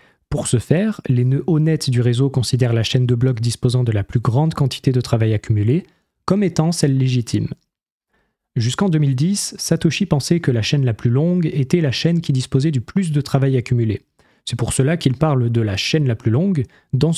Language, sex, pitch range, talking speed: French, male, 125-155 Hz, 205 wpm